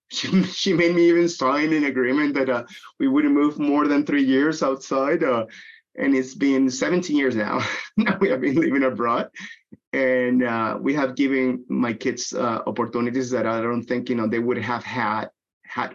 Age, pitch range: 30-49, 125-175 Hz